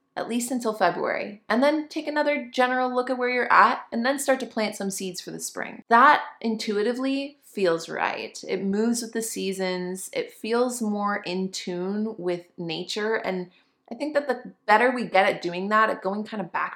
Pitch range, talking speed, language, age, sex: 180-235 Hz, 200 wpm, English, 20-39, female